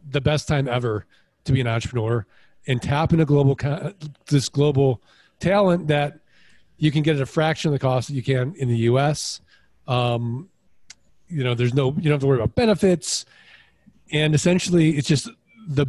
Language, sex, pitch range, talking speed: English, male, 130-175 Hz, 185 wpm